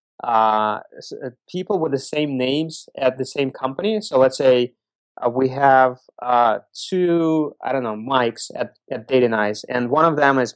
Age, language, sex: 20-39, English, male